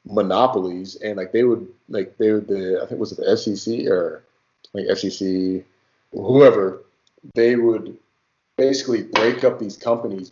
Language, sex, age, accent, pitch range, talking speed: English, male, 20-39, American, 95-125 Hz, 150 wpm